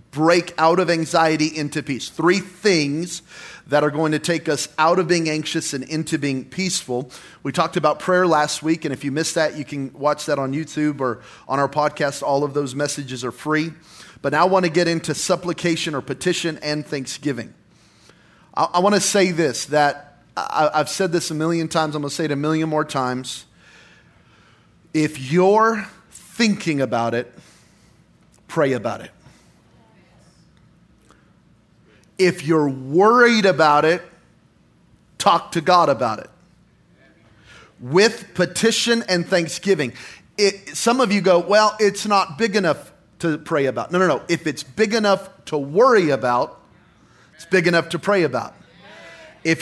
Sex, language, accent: male, English, American